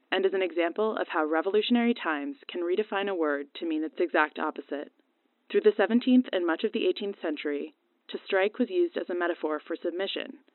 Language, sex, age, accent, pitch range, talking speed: English, female, 20-39, American, 160-225 Hz, 200 wpm